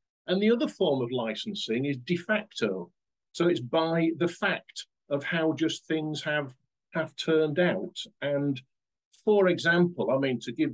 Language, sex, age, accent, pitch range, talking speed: English, male, 50-69, British, 125-160 Hz, 160 wpm